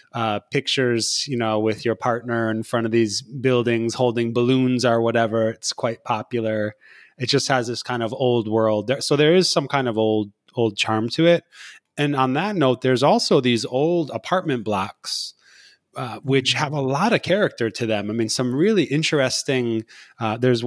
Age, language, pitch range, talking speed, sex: 20-39, English, 110-135 Hz, 185 wpm, male